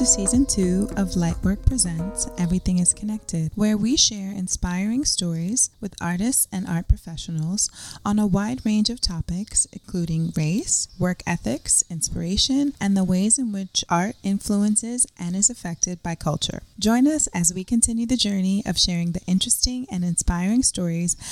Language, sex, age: English, female, 20-39